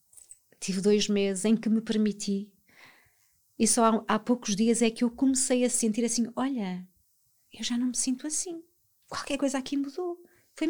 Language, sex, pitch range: Portuguese, female, 200-240 Hz